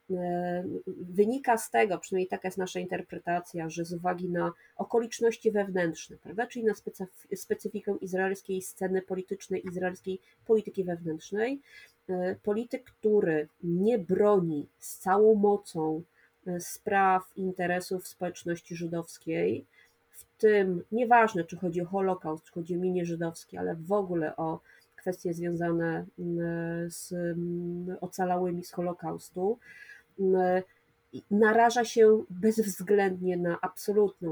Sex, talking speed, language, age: female, 105 wpm, Polish, 30-49